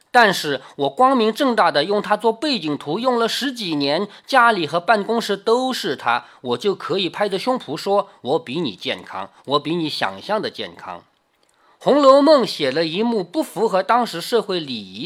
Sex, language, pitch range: male, Chinese, 165-240 Hz